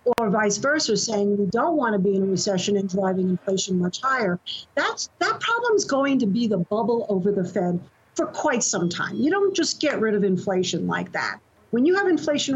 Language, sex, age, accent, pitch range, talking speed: English, female, 50-69, American, 195-285 Hz, 215 wpm